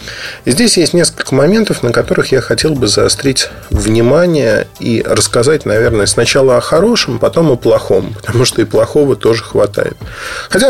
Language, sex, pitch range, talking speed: Russian, male, 110-155 Hz, 155 wpm